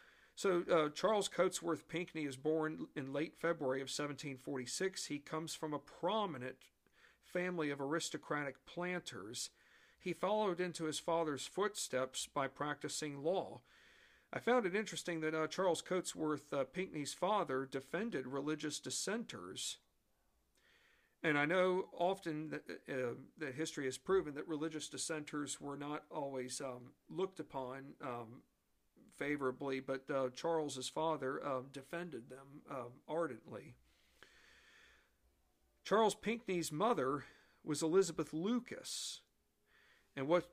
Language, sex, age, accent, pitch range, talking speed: English, male, 50-69, American, 140-180 Hz, 120 wpm